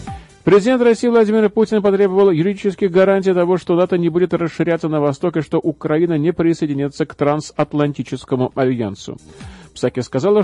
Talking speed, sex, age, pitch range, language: 145 wpm, male, 40-59, 140-185 Hz, Russian